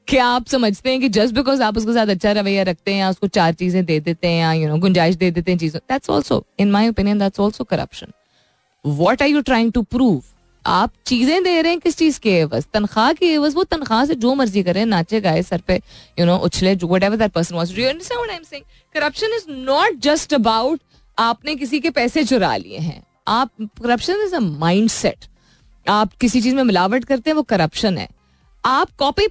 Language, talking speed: Hindi, 180 wpm